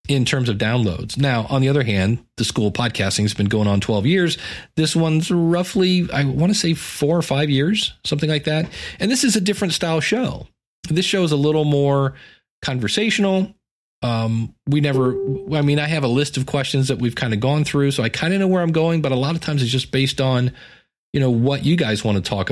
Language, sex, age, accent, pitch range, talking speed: English, male, 40-59, American, 120-160 Hz, 235 wpm